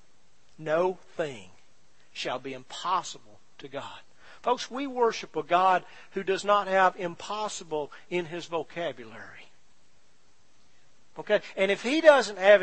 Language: English